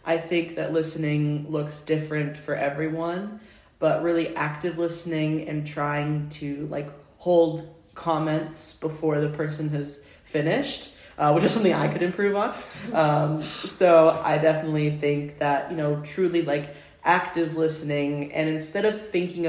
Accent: American